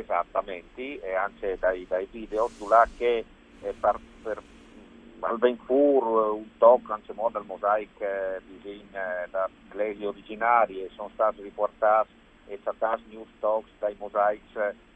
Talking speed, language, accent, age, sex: 130 wpm, Italian, native, 50-69, male